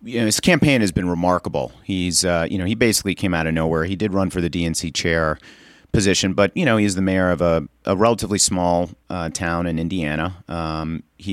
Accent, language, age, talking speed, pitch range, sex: American, English, 40-59, 220 wpm, 80-95 Hz, male